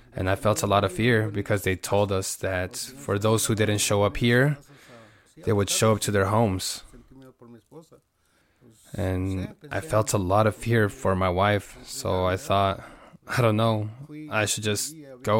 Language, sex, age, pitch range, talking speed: English, male, 20-39, 100-125 Hz, 180 wpm